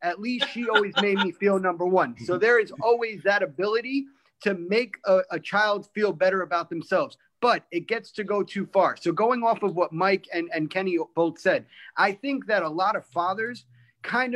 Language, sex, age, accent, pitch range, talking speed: English, male, 30-49, American, 190-240 Hz, 210 wpm